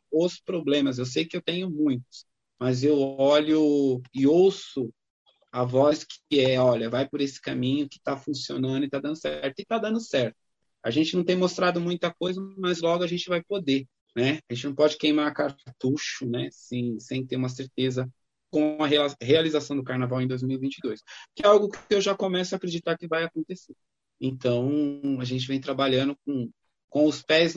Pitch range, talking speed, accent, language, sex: 135-170 Hz, 185 wpm, Brazilian, Portuguese, male